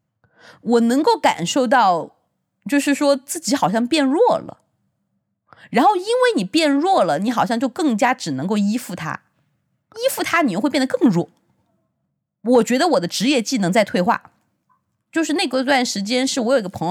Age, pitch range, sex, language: 20-39, 190-270 Hz, female, Chinese